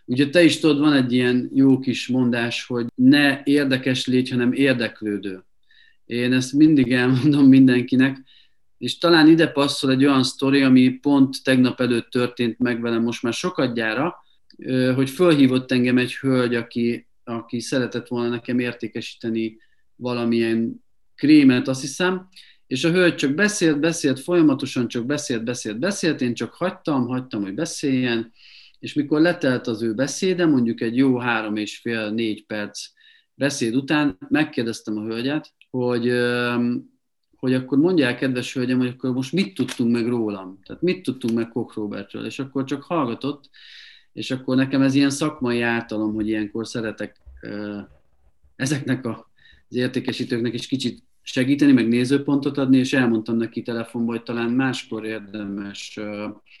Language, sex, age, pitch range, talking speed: Hungarian, male, 40-59, 115-140 Hz, 150 wpm